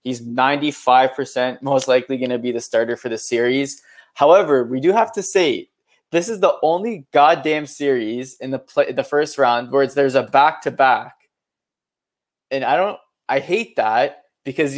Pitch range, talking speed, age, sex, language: 120-150 Hz, 185 wpm, 20-39, male, English